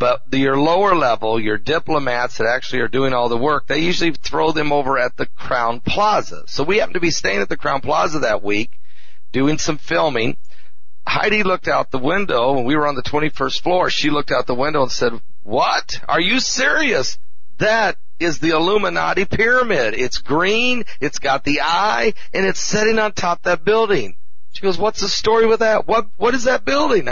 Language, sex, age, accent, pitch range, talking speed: English, male, 40-59, American, 135-185 Hz, 200 wpm